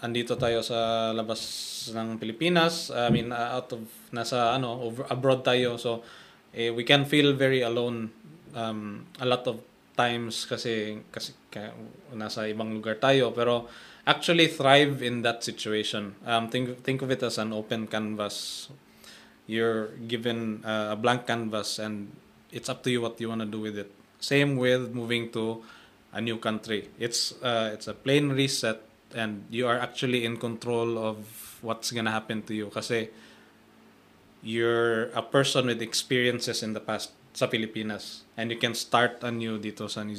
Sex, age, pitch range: male, 20-39, 110-125 Hz